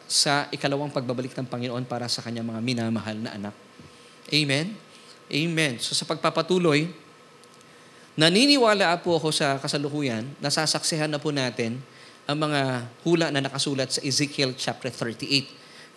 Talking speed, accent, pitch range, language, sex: 130 wpm, native, 135-165 Hz, Filipino, male